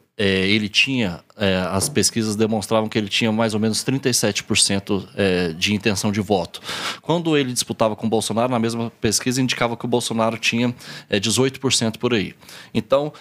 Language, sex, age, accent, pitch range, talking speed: English, male, 20-39, Brazilian, 110-150 Hz, 175 wpm